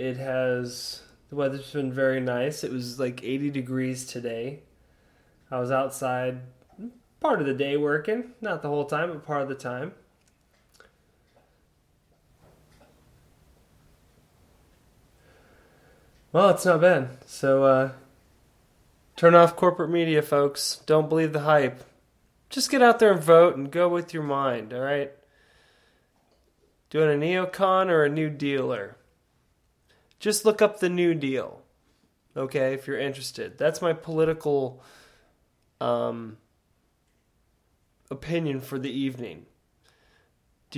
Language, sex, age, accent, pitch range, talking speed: English, male, 20-39, American, 130-165 Hz, 125 wpm